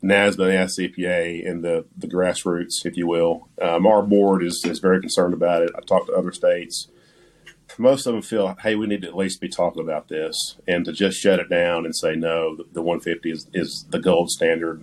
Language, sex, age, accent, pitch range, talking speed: English, male, 40-59, American, 85-105 Hz, 220 wpm